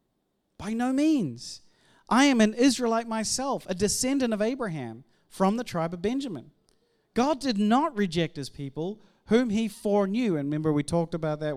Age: 30-49